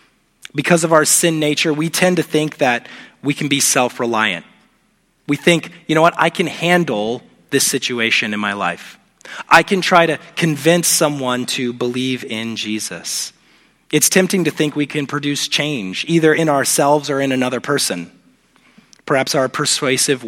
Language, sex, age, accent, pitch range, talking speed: English, male, 30-49, American, 120-155 Hz, 165 wpm